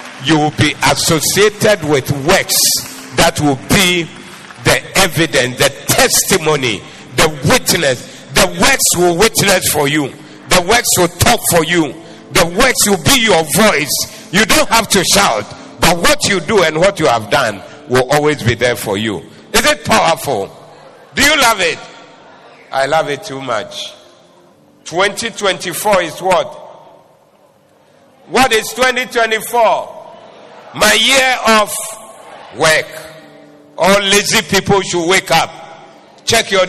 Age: 50-69